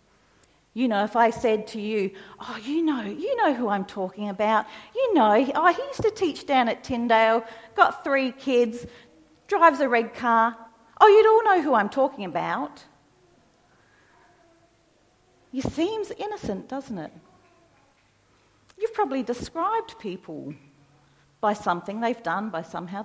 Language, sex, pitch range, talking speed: English, female, 195-280 Hz, 145 wpm